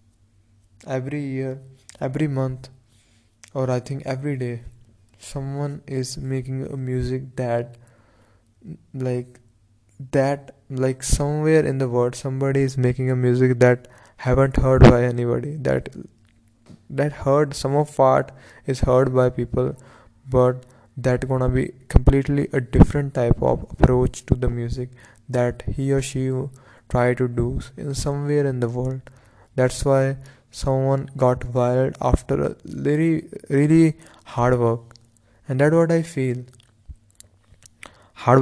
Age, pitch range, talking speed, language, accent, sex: 20-39, 120-135 Hz, 130 wpm, English, Indian, male